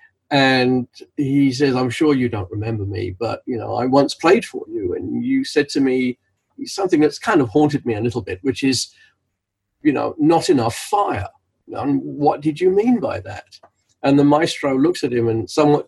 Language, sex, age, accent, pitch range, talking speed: English, male, 40-59, British, 120-180 Hz, 200 wpm